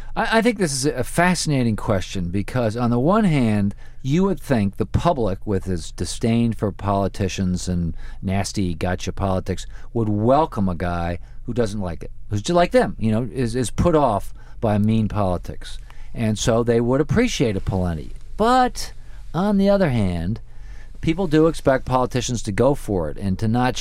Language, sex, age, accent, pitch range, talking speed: English, male, 50-69, American, 105-140 Hz, 175 wpm